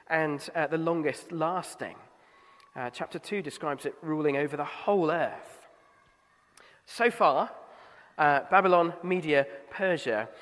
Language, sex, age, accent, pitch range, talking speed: English, male, 30-49, British, 130-185 Hz, 110 wpm